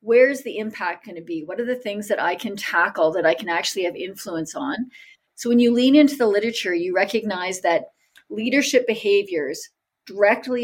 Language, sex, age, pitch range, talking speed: English, female, 40-59, 190-245 Hz, 190 wpm